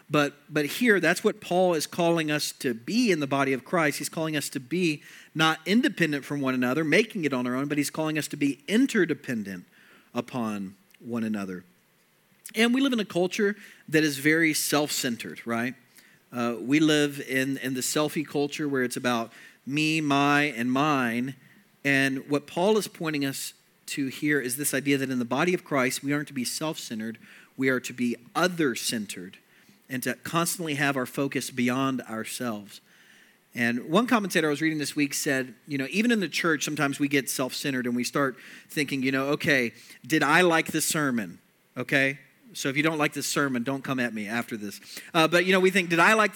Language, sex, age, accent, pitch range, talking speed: English, male, 40-59, American, 130-165 Hz, 200 wpm